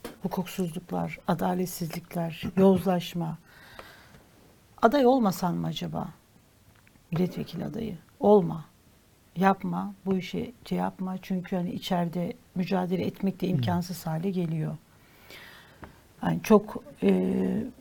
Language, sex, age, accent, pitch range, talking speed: Turkish, female, 60-79, native, 175-225 Hz, 90 wpm